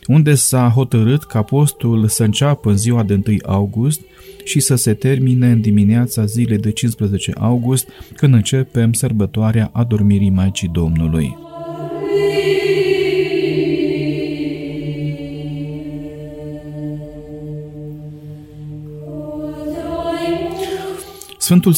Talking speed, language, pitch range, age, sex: 80 wpm, Romanian, 105-145 Hz, 40-59, male